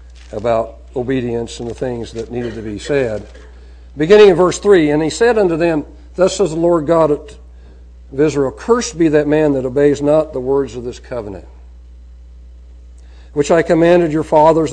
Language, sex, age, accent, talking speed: English, male, 60-79, American, 175 wpm